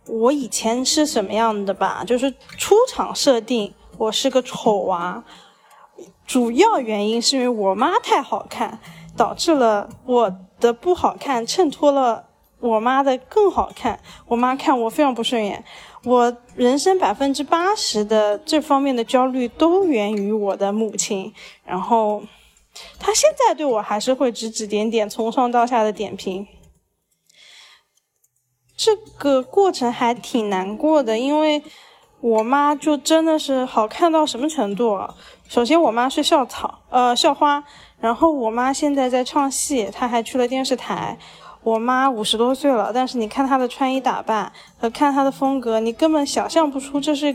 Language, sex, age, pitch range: Chinese, female, 20-39, 225-285 Hz